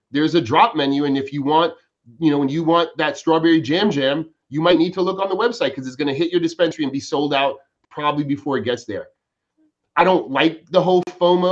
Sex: male